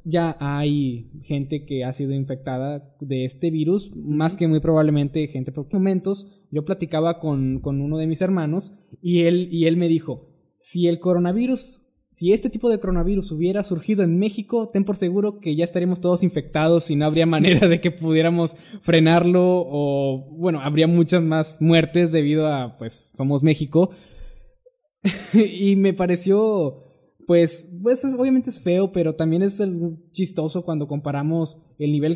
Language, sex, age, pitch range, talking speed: Spanish, male, 20-39, 140-180 Hz, 160 wpm